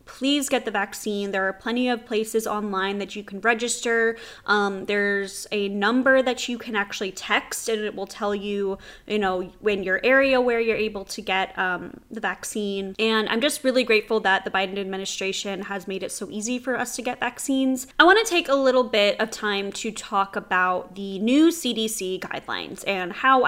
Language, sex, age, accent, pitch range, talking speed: English, female, 10-29, American, 200-255 Hz, 195 wpm